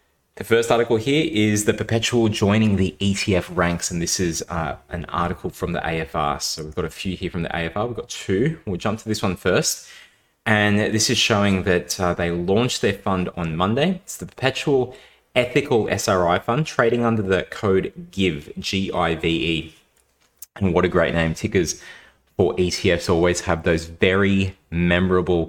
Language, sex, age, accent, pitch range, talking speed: English, male, 20-39, Australian, 85-100 Hz, 175 wpm